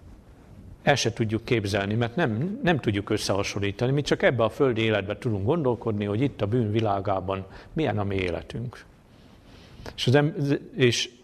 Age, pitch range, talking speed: 50-69, 100-120 Hz, 150 wpm